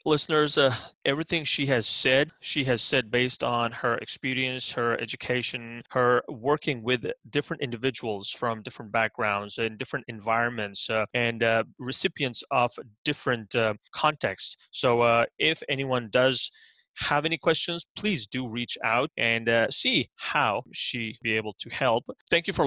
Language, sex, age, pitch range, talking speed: English, male, 30-49, 120-150 Hz, 155 wpm